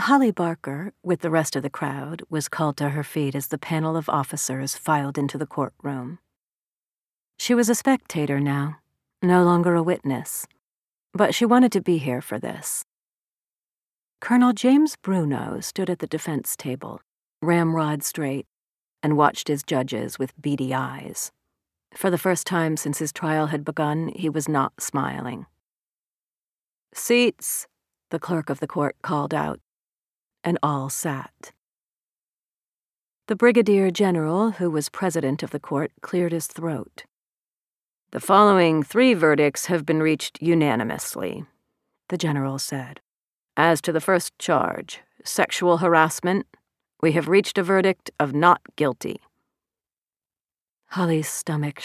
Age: 40-59